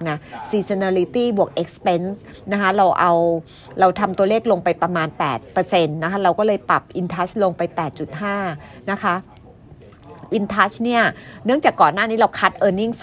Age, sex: 30-49, female